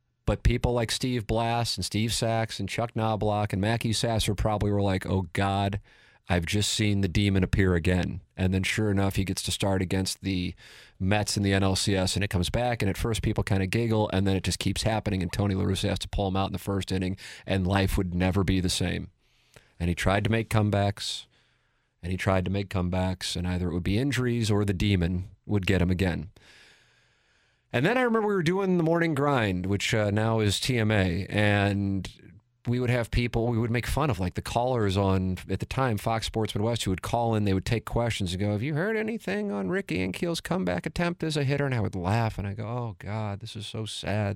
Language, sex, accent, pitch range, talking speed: English, male, American, 95-115 Hz, 235 wpm